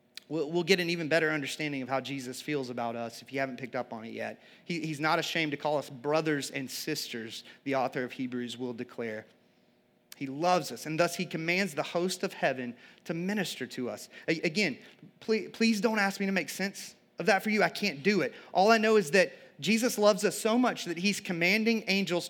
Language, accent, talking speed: English, American, 215 wpm